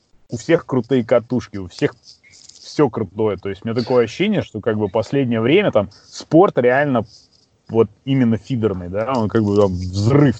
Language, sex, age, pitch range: Russian, male, 20-39, 105-135 Hz